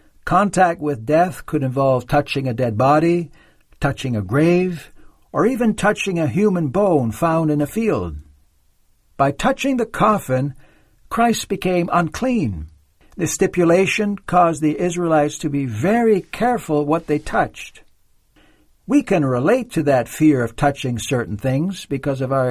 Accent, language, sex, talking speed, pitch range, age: American, English, male, 145 wpm, 130-175 Hz, 60-79